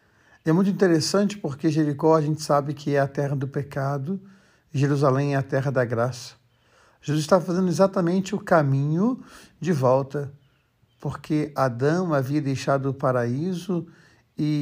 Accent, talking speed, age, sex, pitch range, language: Brazilian, 145 wpm, 60-79, male, 135-165 Hz, Portuguese